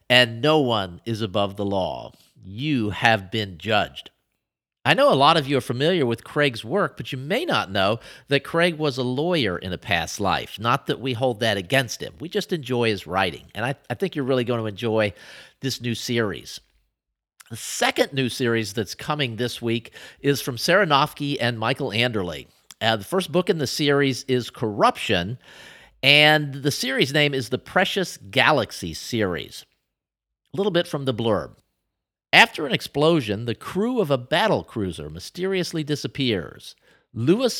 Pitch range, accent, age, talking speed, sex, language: 115-160 Hz, American, 50-69, 175 wpm, male, English